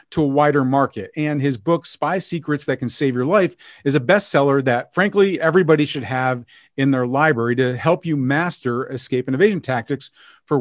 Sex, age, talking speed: male, 40-59, 190 wpm